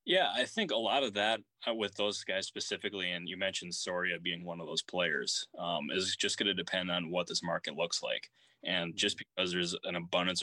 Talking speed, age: 220 wpm, 20-39